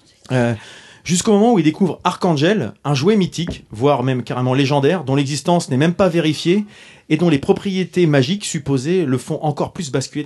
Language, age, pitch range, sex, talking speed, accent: French, 30-49, 130-170 Hz, male, 175 wpm, French